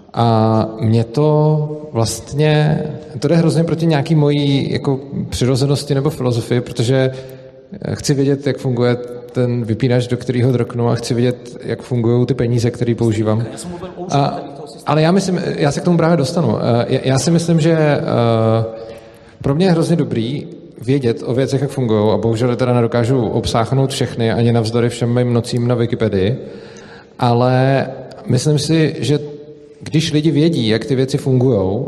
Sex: male